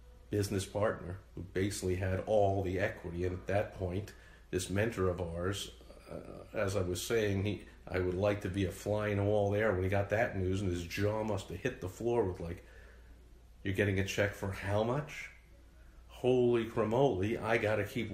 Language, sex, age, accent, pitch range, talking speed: English, male, 50-69, American, 90-110 Hz, 195 wpm